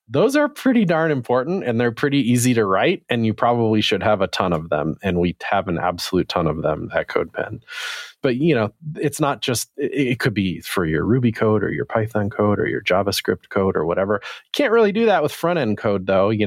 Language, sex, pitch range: English, male, 95-125 Hz